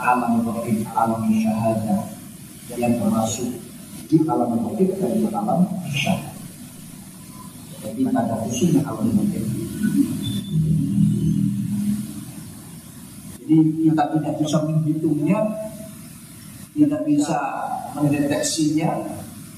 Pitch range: 130-205 Hz